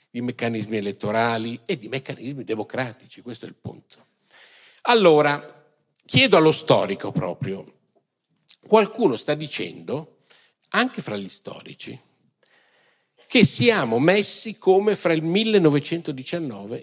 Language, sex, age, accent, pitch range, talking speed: Italian, male, 50-69, native, 105-155 Hz, 105 wpm